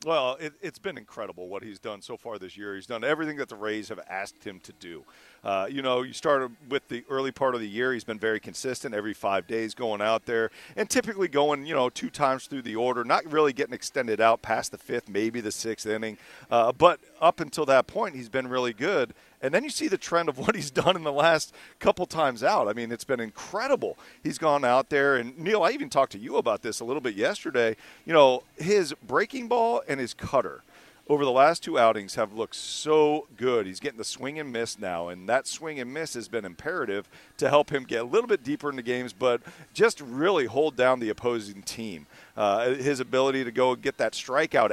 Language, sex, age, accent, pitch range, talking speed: English, male, 40-59, American, 110-150 Hz, 230 wpm